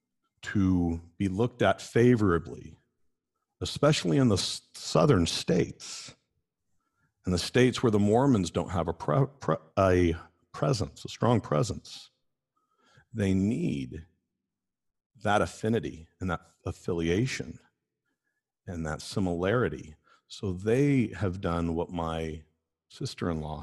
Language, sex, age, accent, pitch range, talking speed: English, male, 50-69, American, 80-105 Hz, 105 wpm